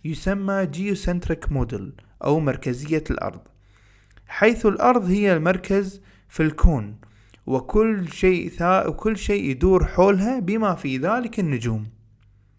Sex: male